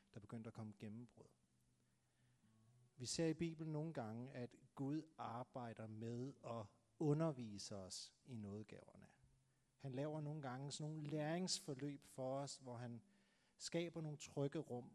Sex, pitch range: male, 115-150 Hz